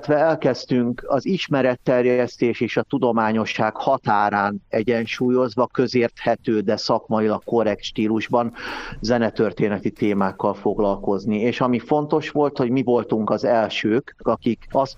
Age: 50-69